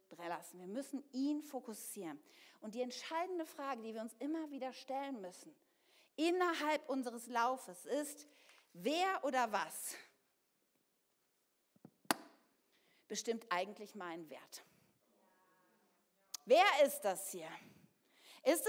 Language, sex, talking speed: German, female, 100 wpm